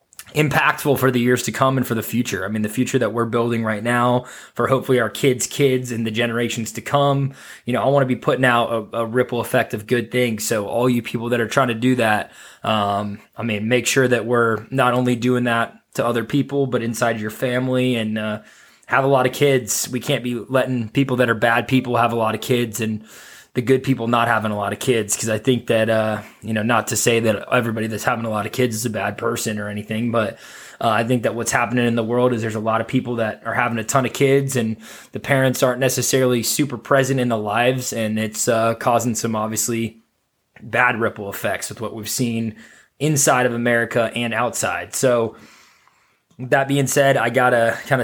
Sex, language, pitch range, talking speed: male, English, 110-125 Hz, 230 wpm